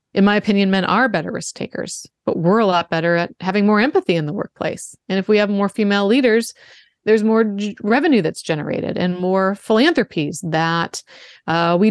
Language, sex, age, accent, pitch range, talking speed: English, female, 30-49, American, 170-215 Hz, 190 wpm